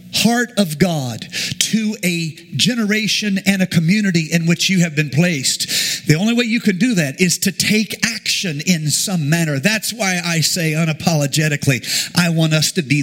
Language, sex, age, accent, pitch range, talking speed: English, male, 50-69, American, 160-215 Hz, 180 wpm